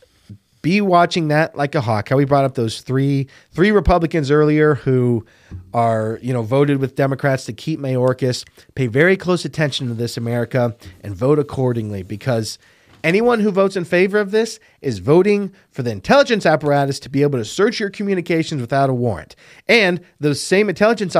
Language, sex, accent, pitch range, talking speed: English, male, American, 130-185 Hz, 180 wpm